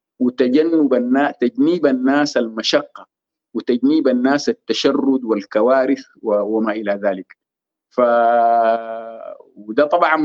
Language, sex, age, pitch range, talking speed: Arabic, male, 50-69, 115-165 Hz, 95 wpm